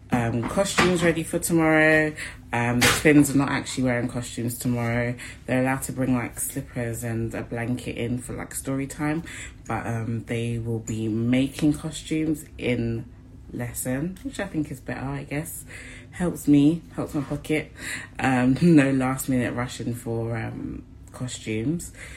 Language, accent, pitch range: English, British, 115-140 Hz